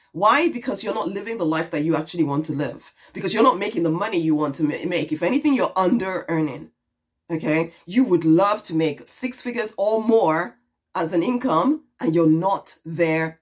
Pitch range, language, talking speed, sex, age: 165-255 Hz, English, 195 wpm, female, 20-39